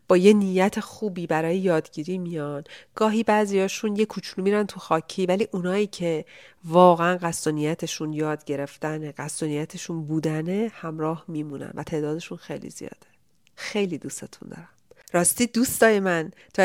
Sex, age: female, 40-59